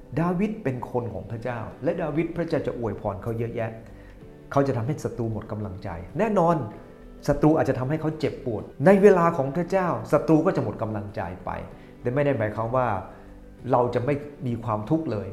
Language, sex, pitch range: English, male, 115-160 Hz